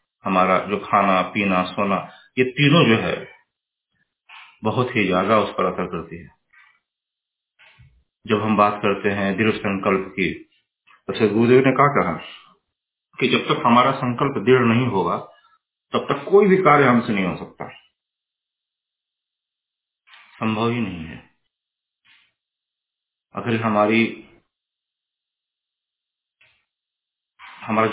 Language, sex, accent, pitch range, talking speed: Hindi, male, native, 100-120 Hz, 115 wpm